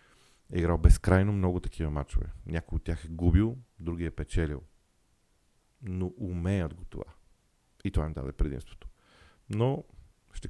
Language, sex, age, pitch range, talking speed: Bulgarian, male, 40-59, 80-100 Hz, 145 wpm